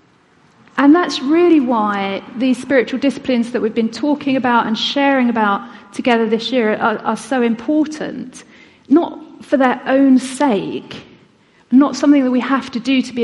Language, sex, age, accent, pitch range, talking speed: English, female, 40-59, British, 220-275 Hz, 165 wpm